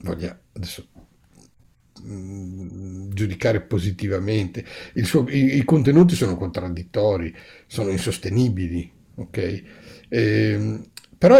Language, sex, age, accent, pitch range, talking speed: Italian, male, 60-79, native, 100-150 Hz, 90 wpm